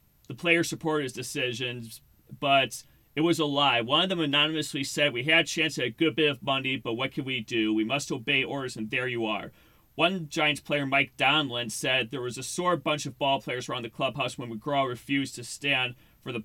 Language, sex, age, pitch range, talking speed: English, male, 30-49, 130-155 Hz, 225 wpm